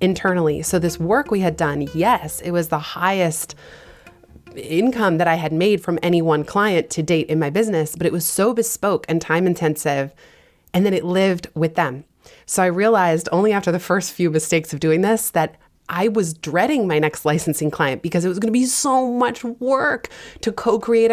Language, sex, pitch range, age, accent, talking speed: English, female, 160-195 Hz, 20-39, American, 200 wpm